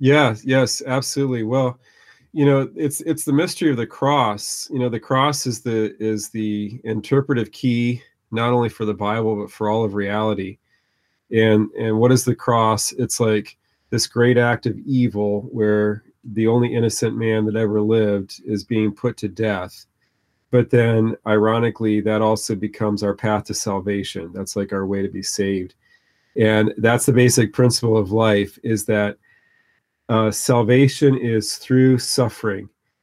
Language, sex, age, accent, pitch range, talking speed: English, male, 40-59, American, 105-125 Hz, 165 wpm